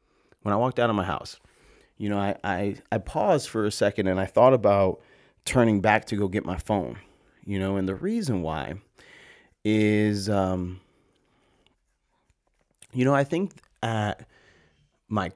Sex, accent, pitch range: male, American, 95-110 Hz